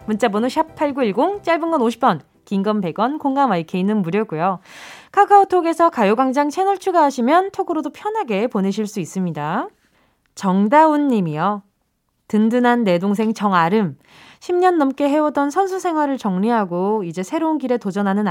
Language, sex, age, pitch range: Korean, female, 20-39, 195-280 Hz